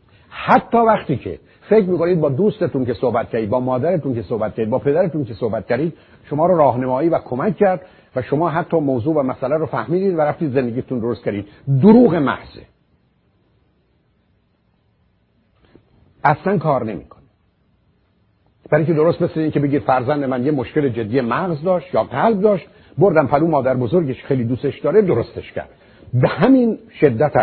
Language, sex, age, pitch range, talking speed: Persian, male, 60-79, 125-170 Hz, 160 wpm